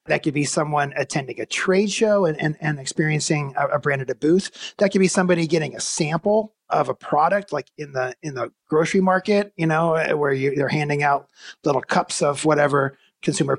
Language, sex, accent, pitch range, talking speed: English, male, American, 145-180 Hz, 210 wpm